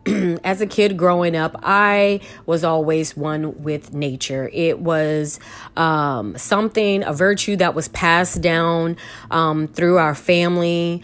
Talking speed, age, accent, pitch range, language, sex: 135 wpm, 30-49, American, 145-170 Hz, English, female